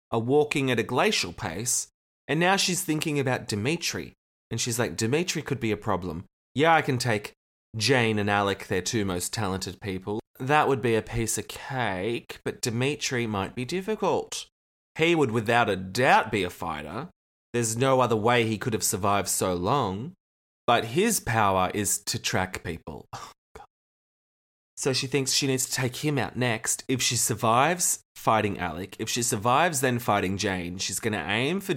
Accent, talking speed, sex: Australian, 180 wpm, male